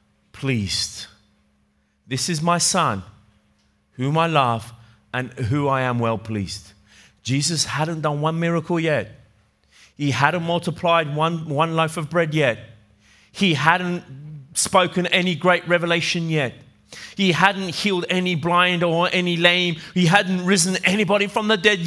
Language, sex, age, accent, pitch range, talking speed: Italian, male, 30-49, British, 110-175 Hz, 140 wpm